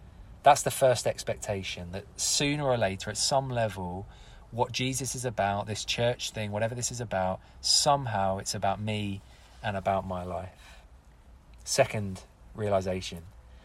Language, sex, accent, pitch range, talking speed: English, male, British, 90-125 Hz, 140 wpm